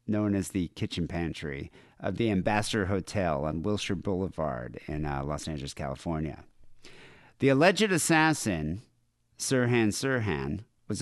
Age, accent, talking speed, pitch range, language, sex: 50-69, American, 125 wpm, 95-130 Hz, English, male